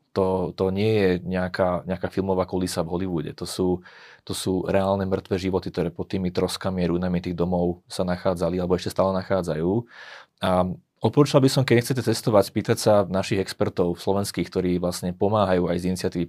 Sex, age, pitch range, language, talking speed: male, 30-49, 90-105 Hz, Slovak, 175 wpm